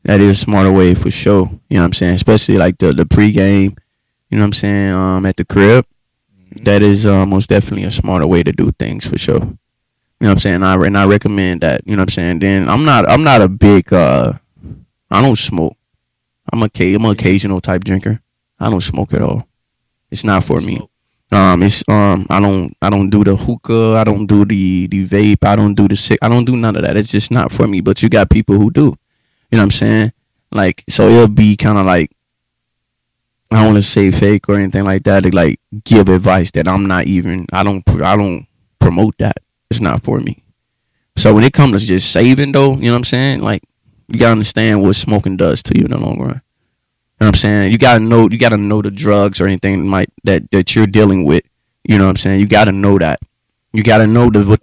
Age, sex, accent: 20-39, male, American